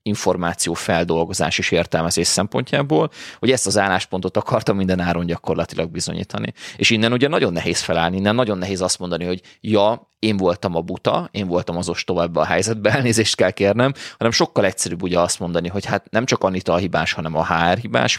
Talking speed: 190 wpm